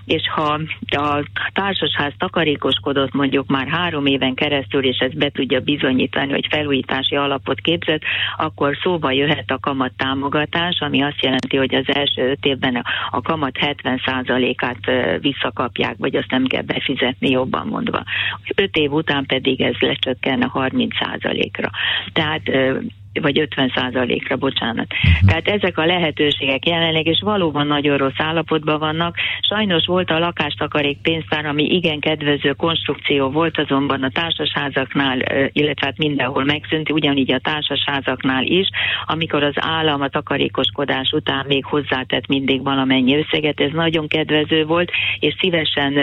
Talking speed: 135 wpm